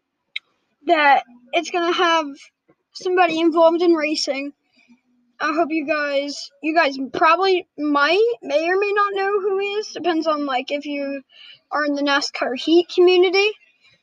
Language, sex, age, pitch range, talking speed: English, female, 10-29, 280-350 Hz, 150 wpm